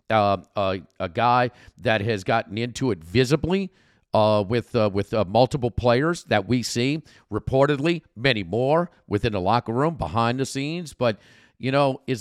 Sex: male